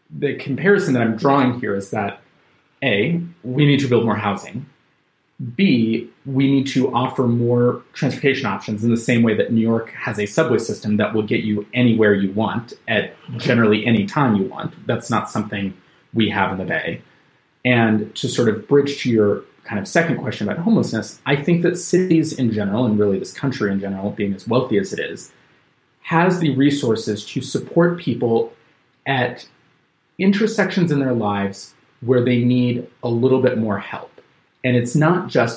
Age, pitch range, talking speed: 30-49, 105-140 Hz, 185 wpm